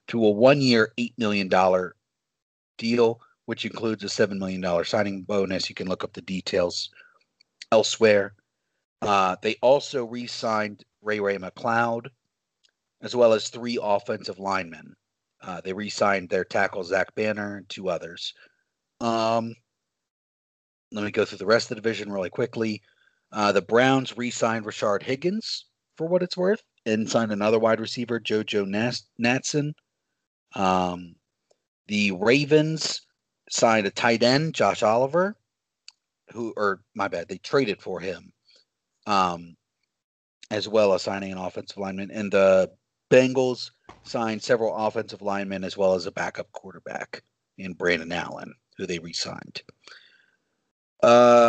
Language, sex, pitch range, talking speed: English, male, 100-125 Hz, 140 wpm